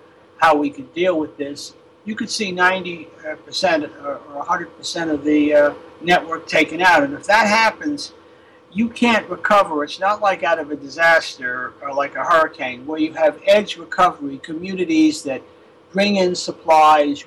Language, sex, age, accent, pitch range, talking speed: English, male, 60-79, American, 155-220 Hz, 165 wpm